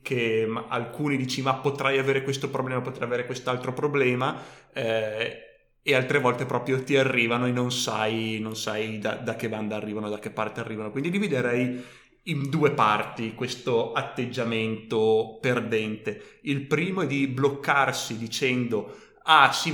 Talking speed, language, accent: 145 wpm, Italian, native